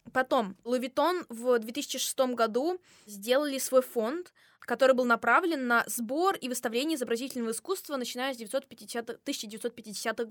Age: 20-39